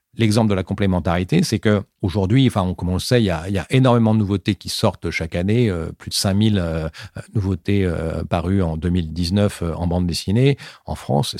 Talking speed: 215 wpm